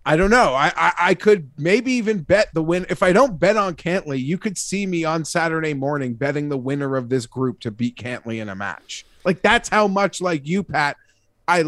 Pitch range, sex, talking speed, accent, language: 140-180 Hz, male, 230 wpm, American, English